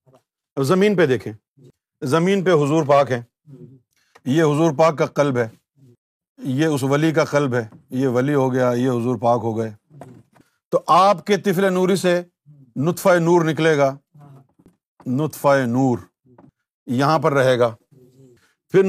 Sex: male